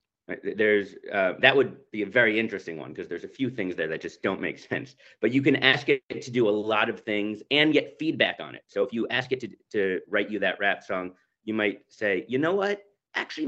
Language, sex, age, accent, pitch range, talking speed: English, male, 30-49, American, 95-145 Hz, 245 wpm